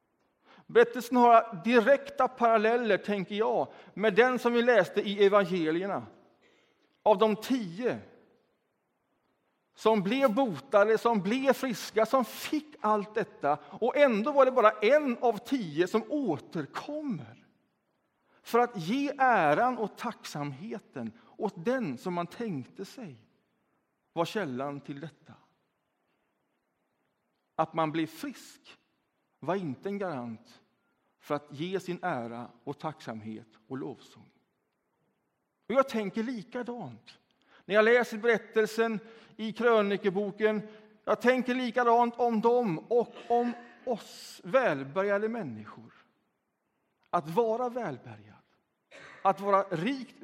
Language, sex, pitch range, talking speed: Swedish, male, 180-245 Hz, 115 wpm